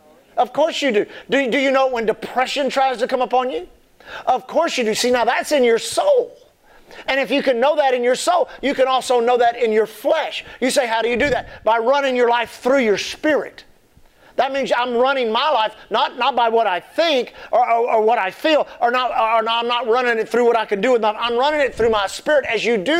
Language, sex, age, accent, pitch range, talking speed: English, male, 40-59, American, 215-280 Hz, 260 wpm